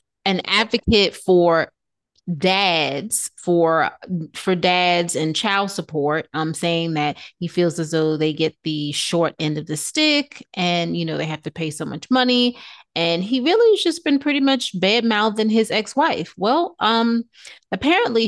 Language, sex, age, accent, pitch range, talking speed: English, female, 30-49, American, 165-215 Hz, 165 wpm